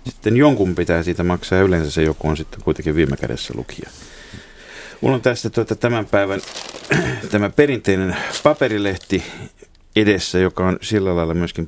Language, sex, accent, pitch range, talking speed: Finnish, male, native, 80-100 Hz, 155 wpm